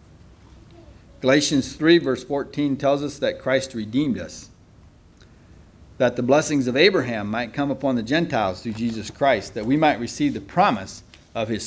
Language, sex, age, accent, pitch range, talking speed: English, male, 40-59, American, 105-155 Hz, 160 wpm